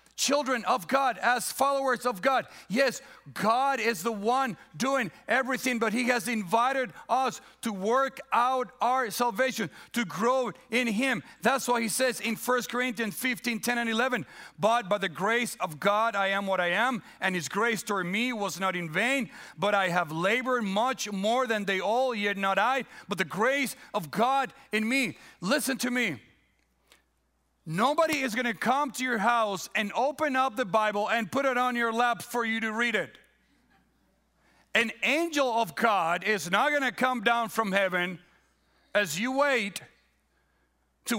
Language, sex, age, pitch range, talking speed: English, male, 40-59, 205-260 Hz, 175 wpm